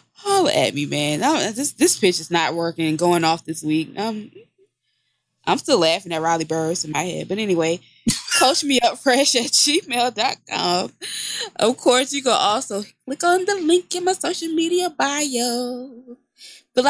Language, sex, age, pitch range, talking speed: English, female, 20-39, 170-245 Hz, 160 wpm